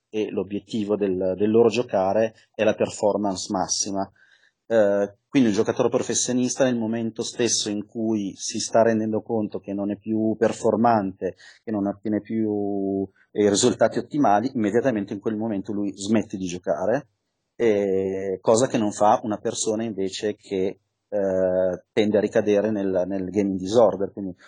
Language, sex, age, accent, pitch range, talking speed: Italian, male, 30-49, native, 100-115 Hz, 150 wpm